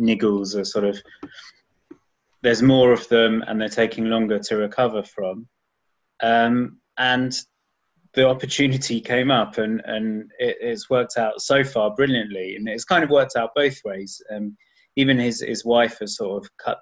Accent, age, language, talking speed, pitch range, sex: British, 20-39, English, 165 wpm, 105-120 Hz, male